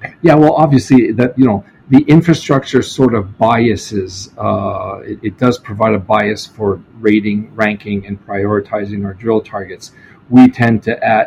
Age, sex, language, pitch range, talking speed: 40-59, male, English, 105-125 Hz, 160 wpm